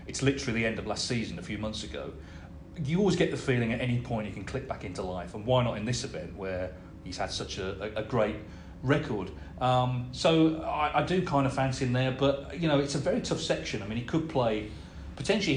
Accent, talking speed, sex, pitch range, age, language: British, 245 wpm, male, 100-140 Hz, 40-59, English